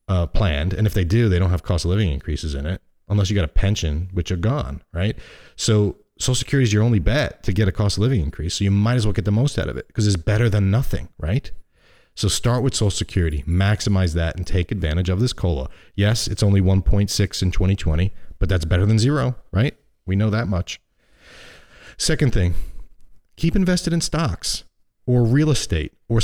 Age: 40-59